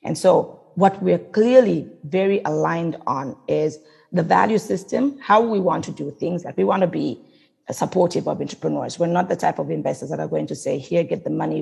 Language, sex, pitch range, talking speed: English, female, 165-210 Hz, 210 wpm